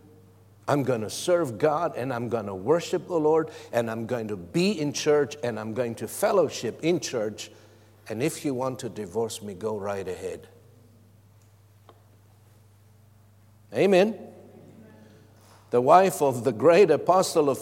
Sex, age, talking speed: male, 60-79, 150 wpm